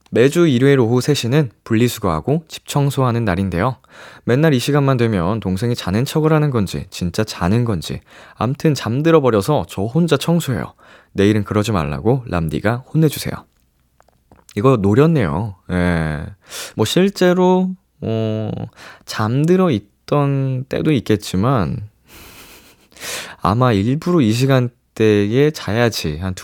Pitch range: 95-135 Hz